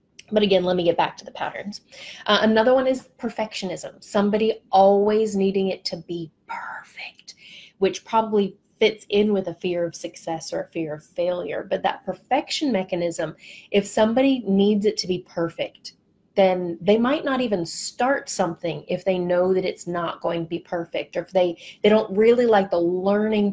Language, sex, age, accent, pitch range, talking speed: English, female, 30-49, American, 175-210 Hz, 185 wpm